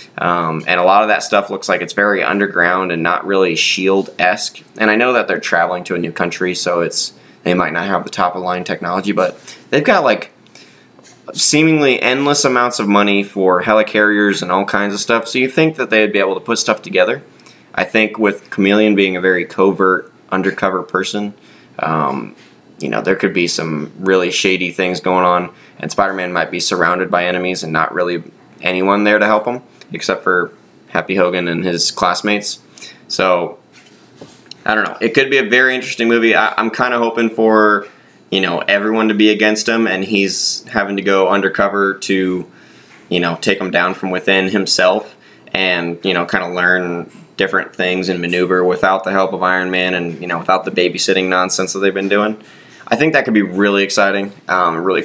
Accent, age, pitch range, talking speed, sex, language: American, 20-39, 90-105 Hz, 200 wpm, male, English